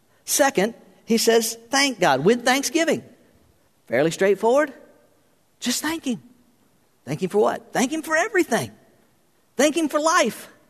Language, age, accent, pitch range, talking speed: English, 50-69, American, 215-300 Hz, 135 wpm